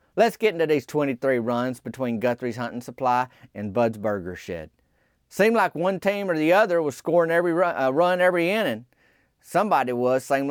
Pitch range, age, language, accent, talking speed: 135-200 Hz, 30-49, English, American, 185 wpm